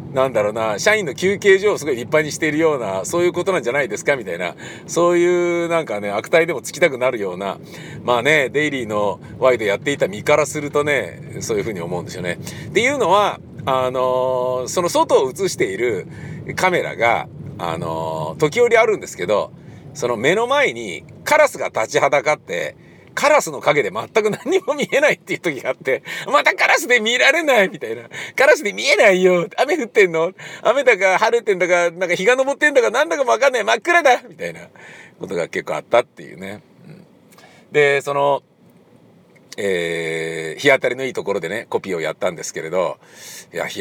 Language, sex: Japanese, male